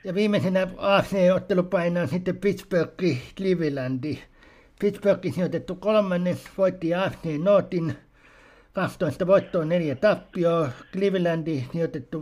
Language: Finnish